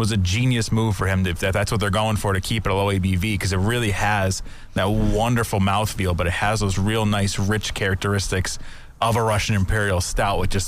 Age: 30-49